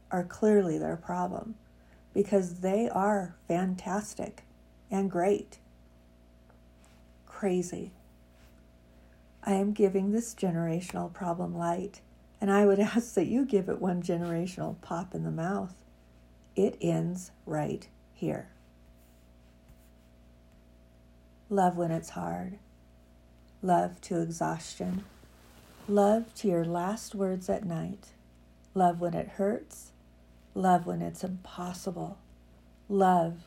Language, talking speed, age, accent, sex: English, 105 wpm, 50-69, American, female